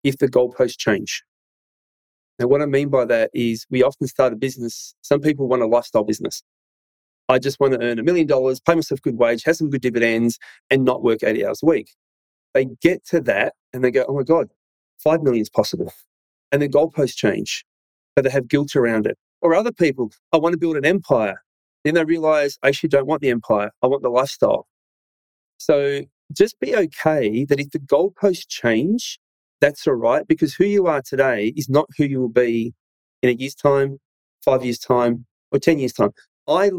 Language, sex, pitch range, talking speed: English, male, 120-155 Hz, 205 wpm